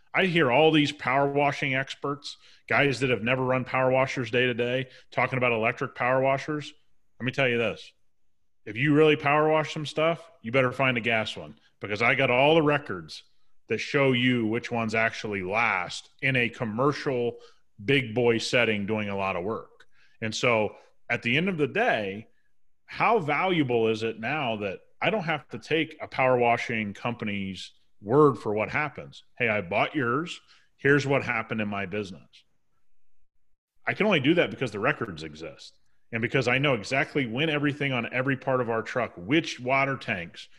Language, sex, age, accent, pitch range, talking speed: English, male, 30-49, American, 115-145 Hz, 185 wpm